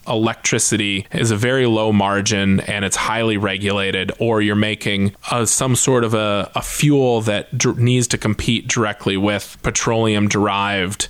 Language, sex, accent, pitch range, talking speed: English, male, American, 105-125 Hz, 145 wpm